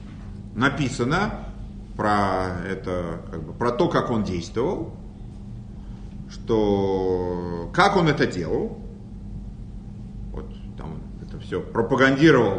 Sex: male